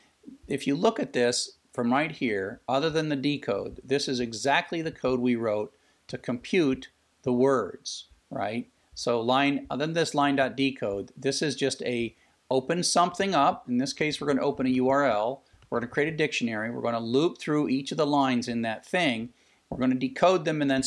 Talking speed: 205 wpm